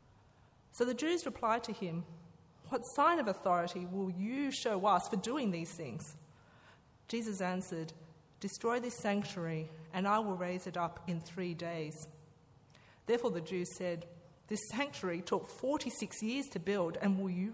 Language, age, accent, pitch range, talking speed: English, 30-49, Australian, 160-200 Hz, 155 wpm